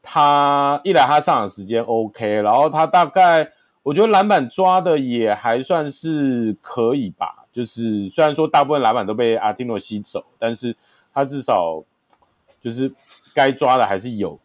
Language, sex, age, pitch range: Chinese, male, 30-49, 105-145 Hz